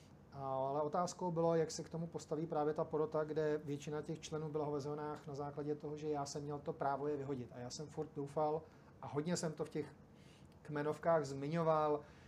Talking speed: 205 wpm